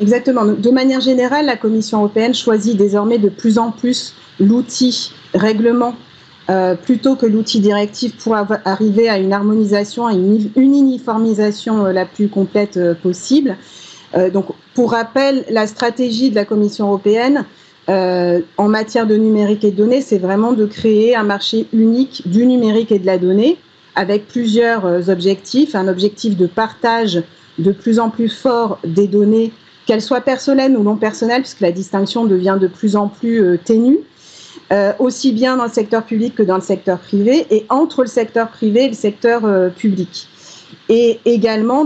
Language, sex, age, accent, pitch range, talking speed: French, female, 40-59, French, 200-235 Hz, 170 wpm